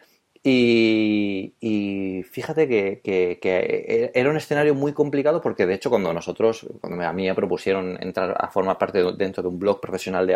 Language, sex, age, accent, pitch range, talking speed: Spanish, male, 30-49, Spanish, 100-130 Hz, 185 wpm